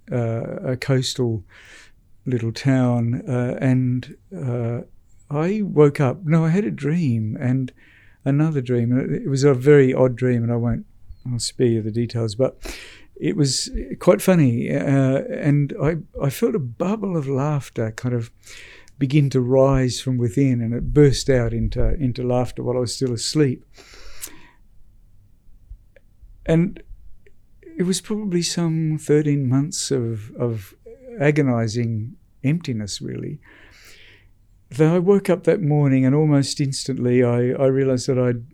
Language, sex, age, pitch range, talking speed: English, male, 60-79, 120-150 Hz, 145 wpm